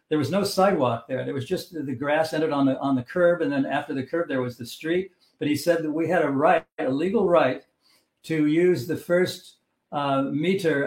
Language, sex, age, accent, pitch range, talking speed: English, male, 60-79, American, 135-170 Hz, 230 wpm